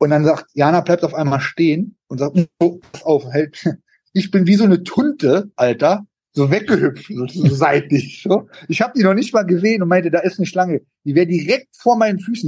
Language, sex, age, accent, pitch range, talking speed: German, male, 30-49, German, 145-190 Hz, 220 wpm